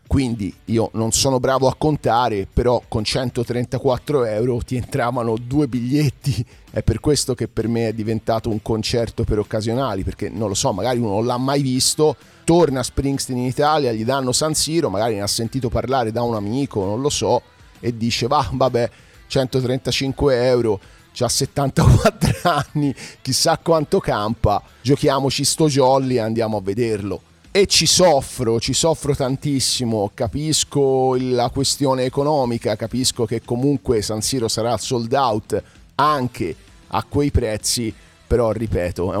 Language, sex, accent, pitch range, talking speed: Italian, male, native, 110-135 Hz, 155 wpm